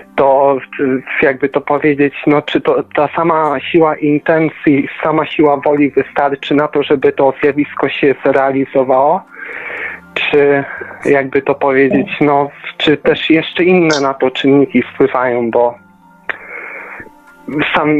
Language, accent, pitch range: Polish, native, 135-155 Hz